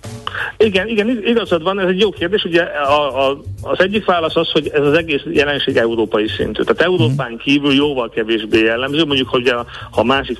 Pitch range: 115-150 Hz